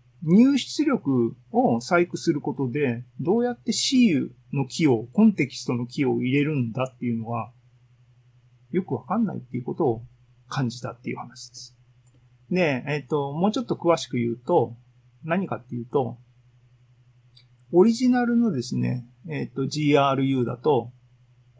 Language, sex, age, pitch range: Japanese, male, 40-59, 125-180 Hz